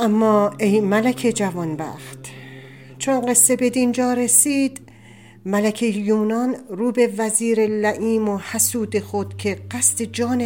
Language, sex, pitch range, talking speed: Persian, female, 180-250 Hz, 120 wpm